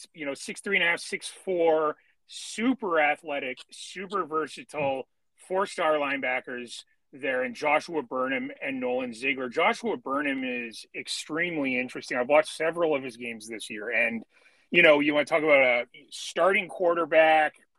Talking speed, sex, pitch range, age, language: 155 wpm, male, 140-185 Hz, 30-49, English